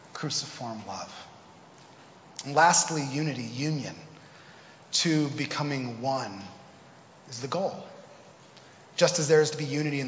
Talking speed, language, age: 115 wpm, English, 30-49